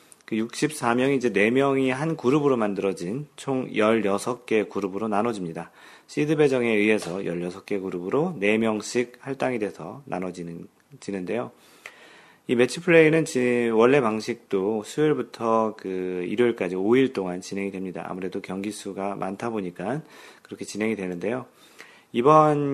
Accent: native